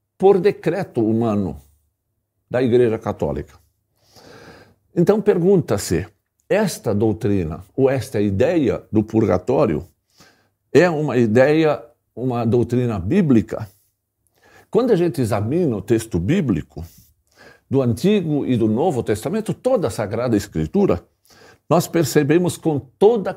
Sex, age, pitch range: male, 60-79, 110-175 Hz